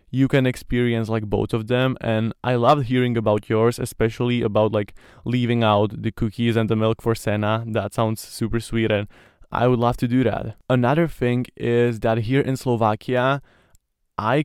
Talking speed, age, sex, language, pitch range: 185 wpm, 20-39, male, English, 110-125 Hz